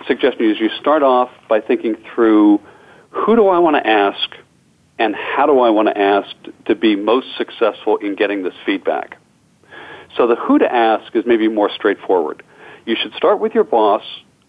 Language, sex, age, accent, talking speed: English, male, 50-69, American, 180 wpm